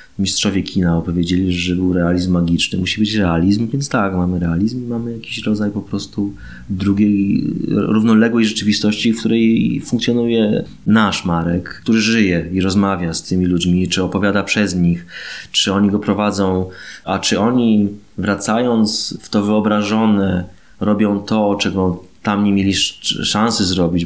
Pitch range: 85-105 Hz